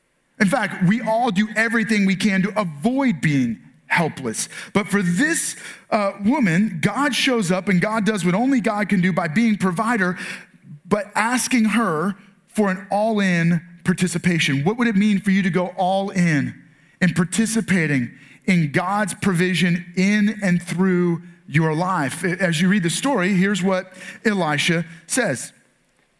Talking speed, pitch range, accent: 150 wpm, 175-215 Hz, American